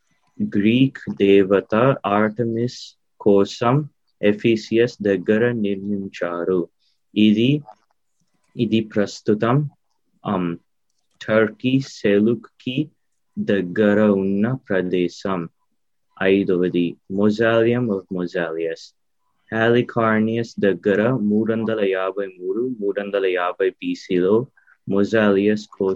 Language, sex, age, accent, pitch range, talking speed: Telugu, male, 30-49, native, 100-115 Hz, 70 wpm